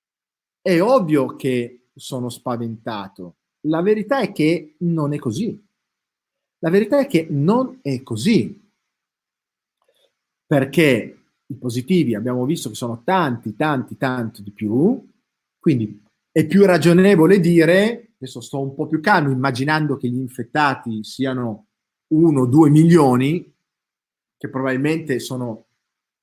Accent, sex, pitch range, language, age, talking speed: native, male, 125-170 Hz, Italian, 40-59, 125 wpm